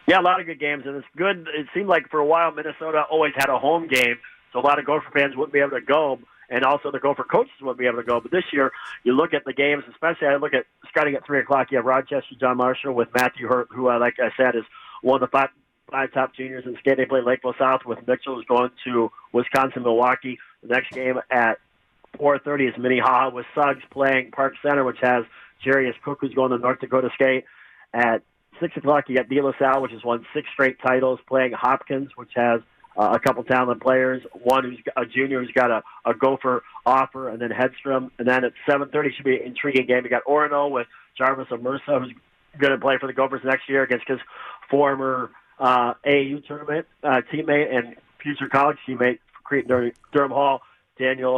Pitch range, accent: 125-140 Hz, American